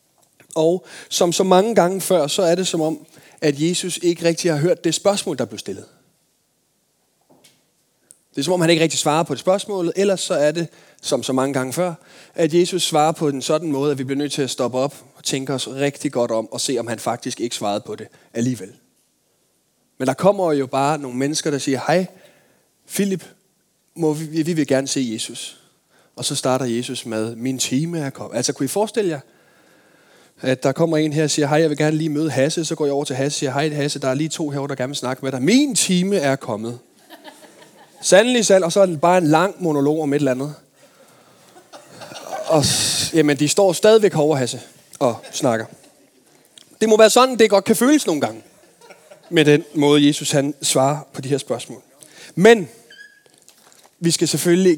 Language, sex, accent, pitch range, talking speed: Danish, male, native, 140-175 Hz, 210 wpm